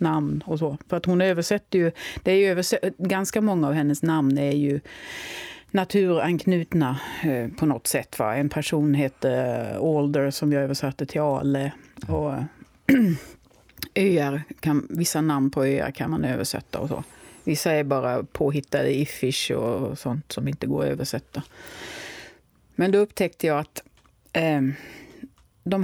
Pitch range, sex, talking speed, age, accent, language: 140-185 Hz, female, 150 wpm, 30-49, native, Swedish